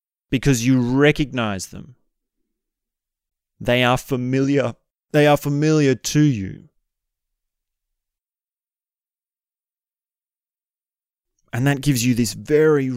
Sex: male